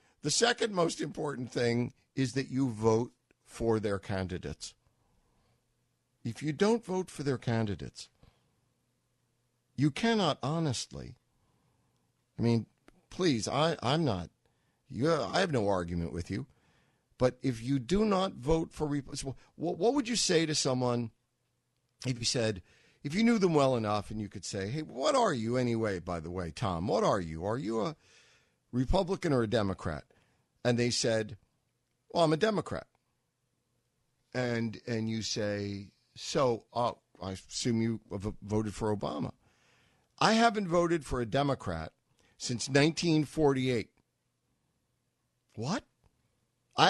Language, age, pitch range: English, 60-79, 115-150 Hz